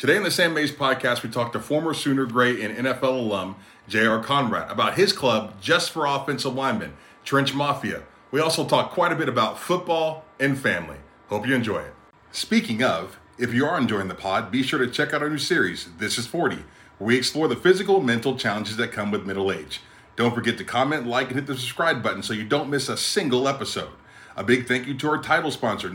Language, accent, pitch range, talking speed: English, American, 110-150 Hz, 225 wpm